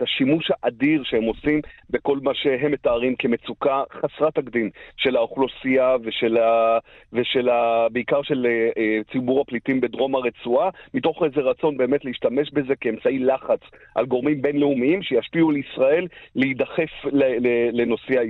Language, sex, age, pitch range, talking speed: Hebrew, male, 40-59, 125-165 Hz, 125 wpm